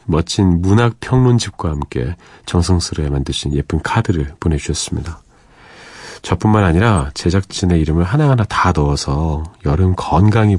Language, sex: Korean, male